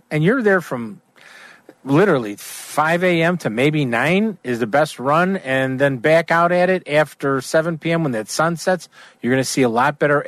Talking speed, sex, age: 200 wpm, male, 50-69